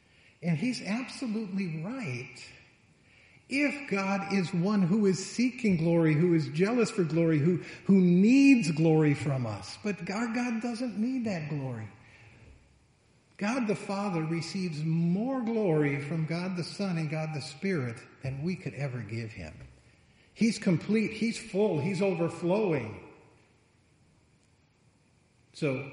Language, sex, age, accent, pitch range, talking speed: English, male, 50-69, American, 125-190 Hz, 130 wpm